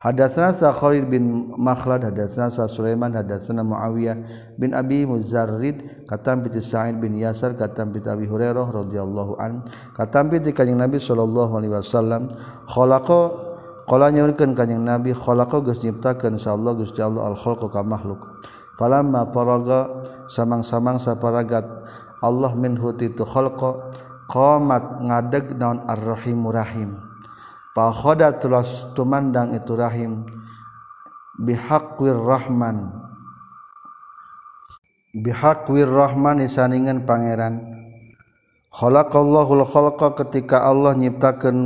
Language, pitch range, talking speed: Indonesian, 115-135 Hz, 105 wpm